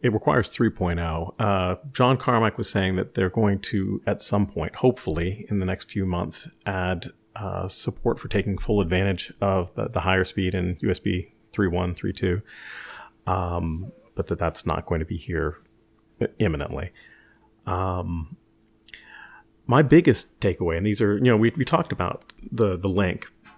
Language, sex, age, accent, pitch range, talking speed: English, male, 30-49, American, 90-110 Hz, 160 wpm